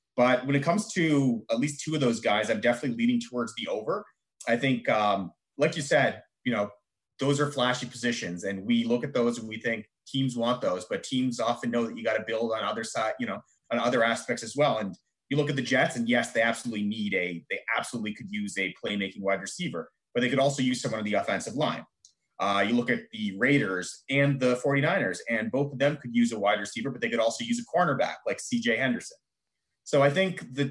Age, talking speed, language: 30-49, 235 wpm, English